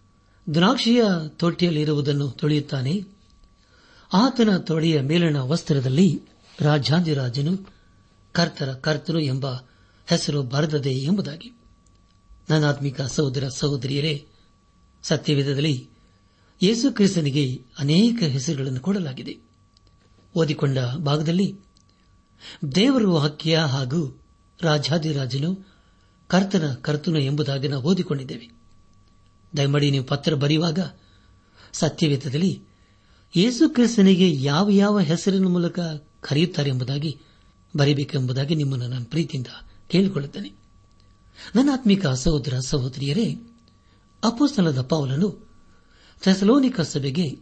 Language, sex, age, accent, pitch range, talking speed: Kannada, male, 60-79, native, 115-170 Hz, 70 wpm